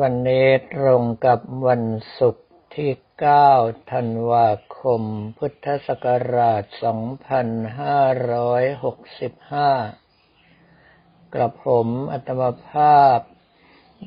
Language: Thai